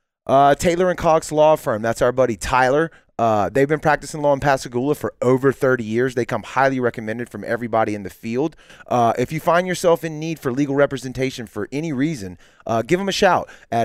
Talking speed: 210 wpm